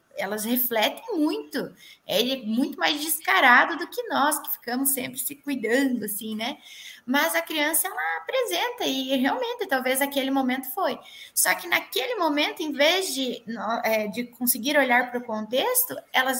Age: 10-29